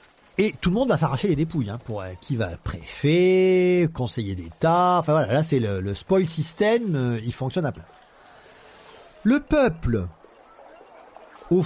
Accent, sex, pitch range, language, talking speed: French, male, 115-185 Hz, French, 165 wpm